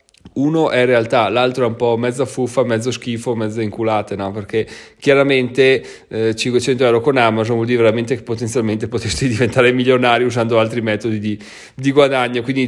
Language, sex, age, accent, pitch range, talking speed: Italian, male, 20-39, native, 120-145 Hz, 165 wpm